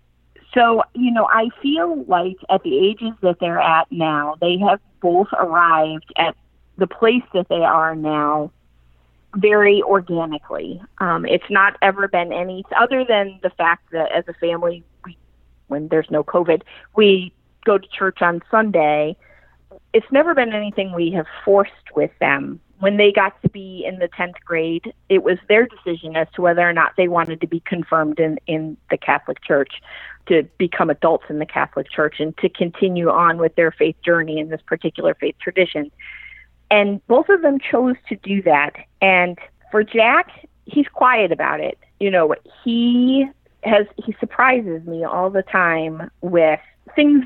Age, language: 30-49, English